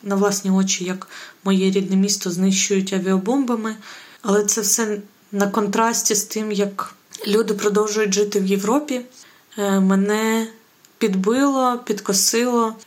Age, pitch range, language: 20-39, 190-215 Hz, Ukrainian